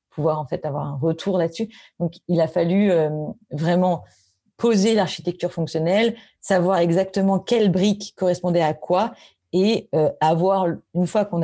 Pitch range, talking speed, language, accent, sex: 155-185 Hz, 150 wpm, French, French, female